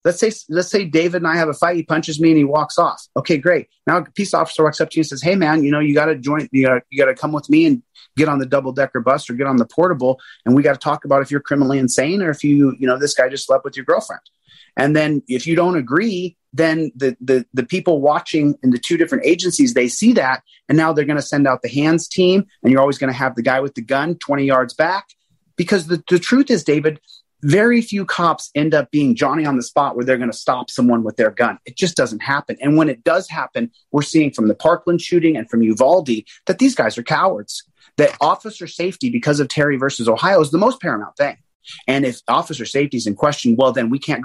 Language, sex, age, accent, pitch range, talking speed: English, male, 30-49, American, 135-175 Hz, 260 wpm